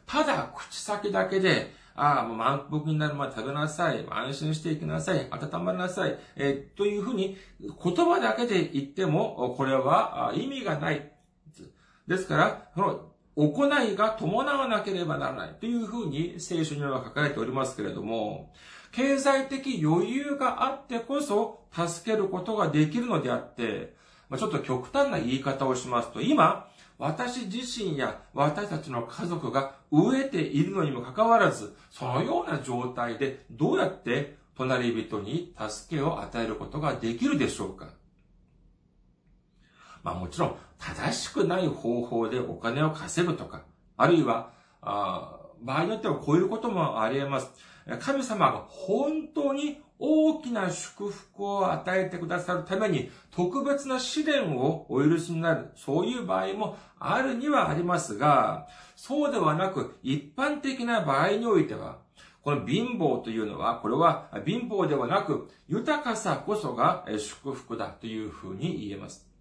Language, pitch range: Japanese, 135-220 Hz